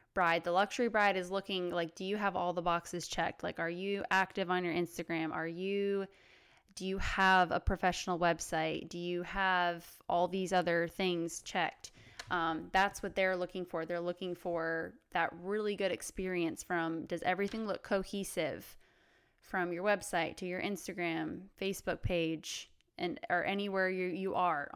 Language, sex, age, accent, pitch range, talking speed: English, female, 20-39, American, 175-195 Hz, 165 wpm